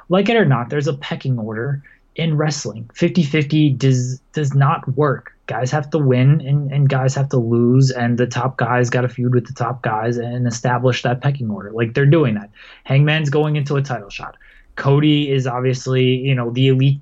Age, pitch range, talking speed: 20-39, 120-145 Hz, 205 wpm